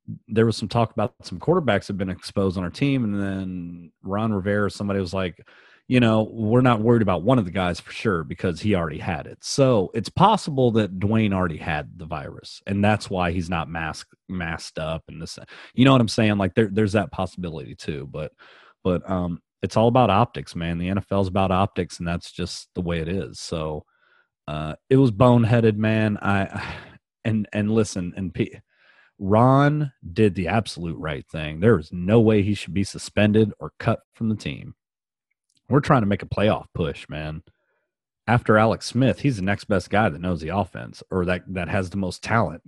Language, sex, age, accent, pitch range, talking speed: English, male, 30-49, American, 85-110 Hz, 205 wpm